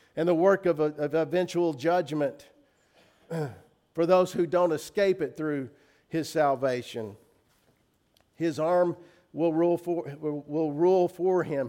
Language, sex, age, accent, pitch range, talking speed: English, male, 50-69, American, 140-170 Hz, 135 wpm